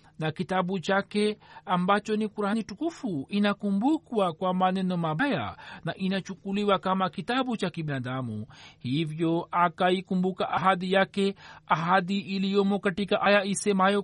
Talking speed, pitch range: 105 wpm, 180-215 Hz